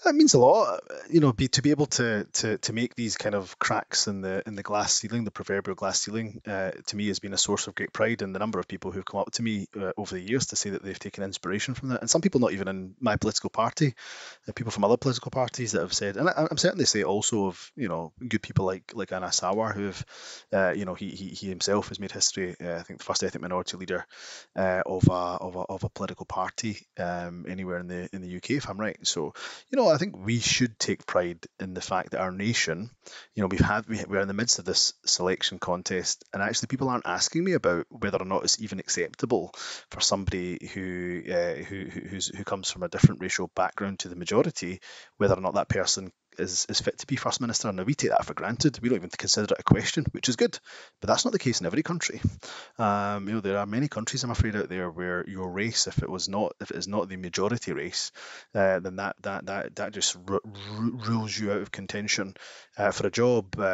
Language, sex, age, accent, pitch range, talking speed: English, male, 20-39, British, 95-115 Hz, 245 wpm